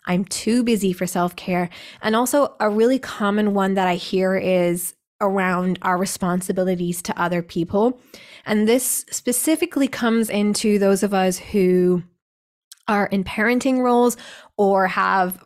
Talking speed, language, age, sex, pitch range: 140 wpm, English, 20-39, female, 185-215 Hz